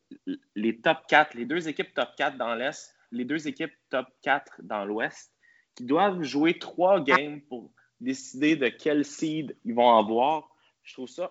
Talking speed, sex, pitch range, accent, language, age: 175 wpm, male, 115-155 Hz, Canadian, French, 20-39